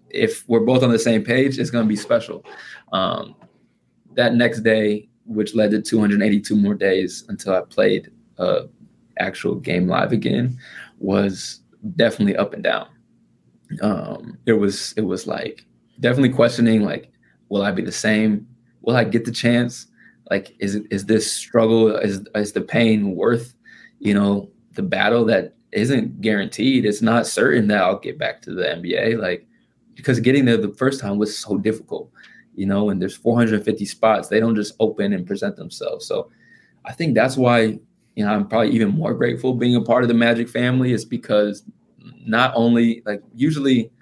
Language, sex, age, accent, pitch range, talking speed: English, male, 20-39, American, 105-125 Hz, 180 wpm